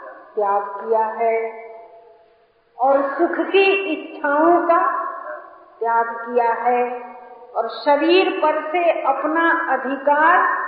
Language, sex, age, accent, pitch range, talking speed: Hindi, female, 50-69, native, 275-355 Hz, 95 wpm